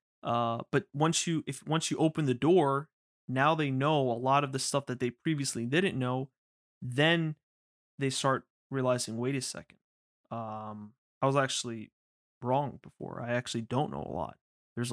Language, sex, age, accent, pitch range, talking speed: English, male, 20-39, American, 115-135 Hz, 175 wpm